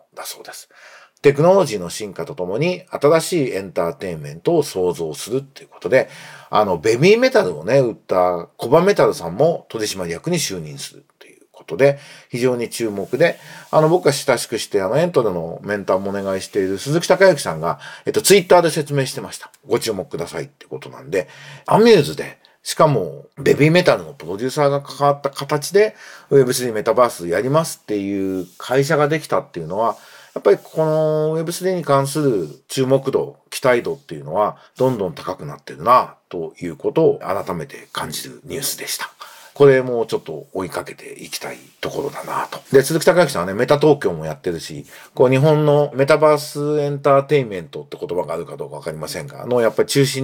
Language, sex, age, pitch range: Japanese, male, 40-59, 125-160 Hz